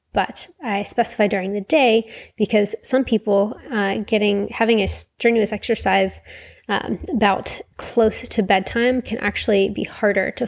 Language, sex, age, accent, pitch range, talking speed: English, female, 20-39, American, 195-230 Hz, 145 wpm